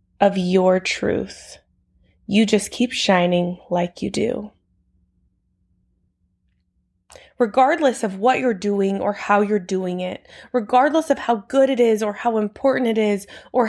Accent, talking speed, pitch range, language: American, 140 wpm, 200-265 Hz, English